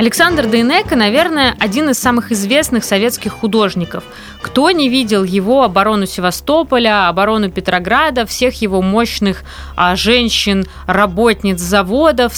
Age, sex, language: 20-39, female, Russian